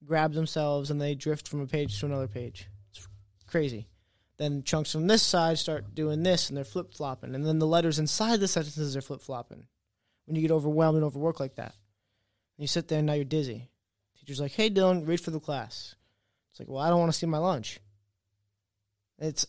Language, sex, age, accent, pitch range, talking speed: English, male, 20-39, American, 115-170 Hz, 215 wpm